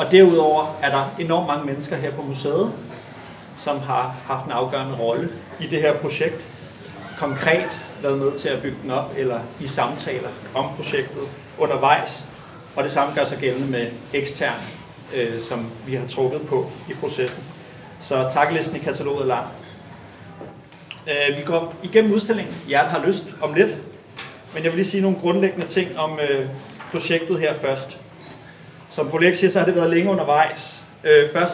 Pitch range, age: 145-180 Hz, 30-49